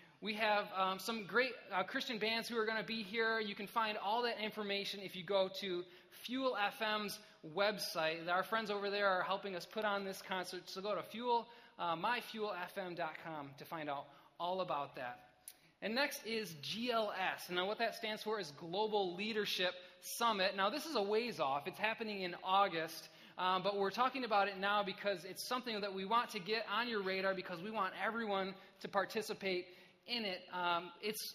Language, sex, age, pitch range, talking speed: English, male, 20-39, 180-220 Hz, 190 wpm